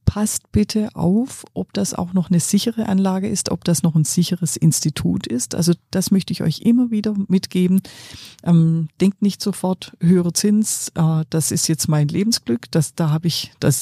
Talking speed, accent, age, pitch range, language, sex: 180 wpm, German, 40-59, 145-190 Hz, German, female